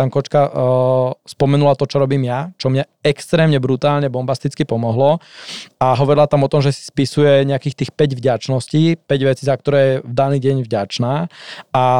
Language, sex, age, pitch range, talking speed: Slovak, male, 20-39, 135-155 Hz, 175 wpm